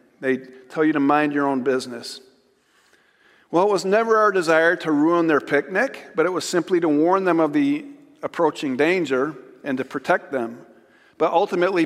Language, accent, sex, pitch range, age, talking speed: English, American, male, 135-185 Hz, 50-69, 175 wpm